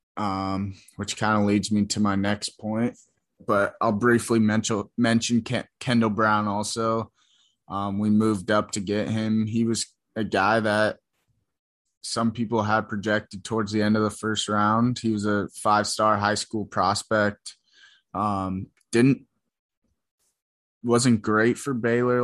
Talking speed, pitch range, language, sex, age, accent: 150 wpm, 100-110 Hz, English, male, 20-39, American